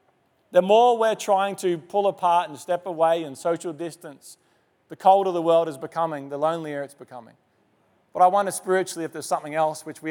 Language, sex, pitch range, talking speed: English, male, 145-185 Hz, 195 wpm